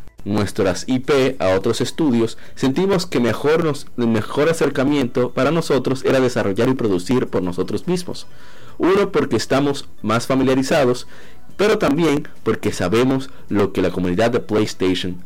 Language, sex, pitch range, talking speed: Spanish, male, 95-130 Hz, 135 wpm